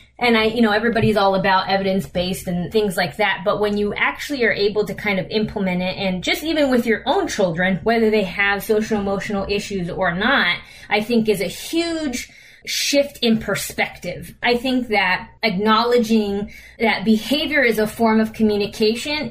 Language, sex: English, female